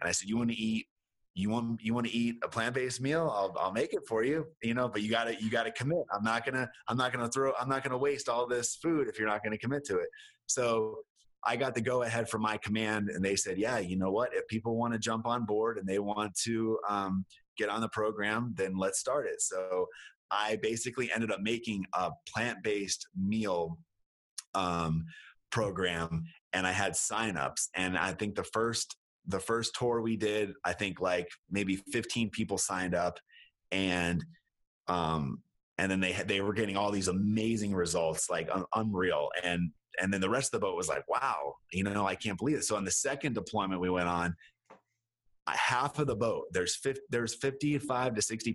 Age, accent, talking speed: 30-49, American, 210 wpm